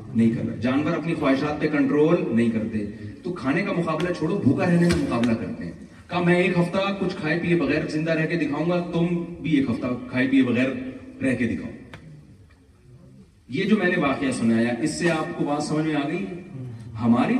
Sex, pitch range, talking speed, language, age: male, 120-190 Hz, 90 wpm, Urdu, 30-49